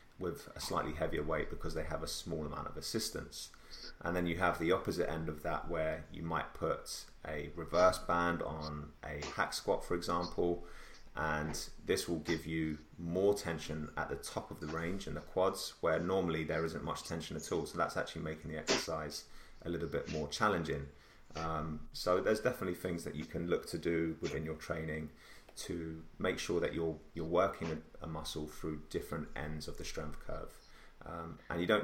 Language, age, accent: English, 30-49, British